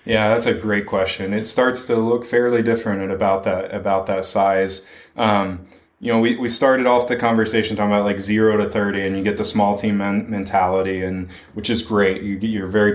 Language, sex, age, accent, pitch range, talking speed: English, male, 20-39, American, 100-120 Hz, 210 wpm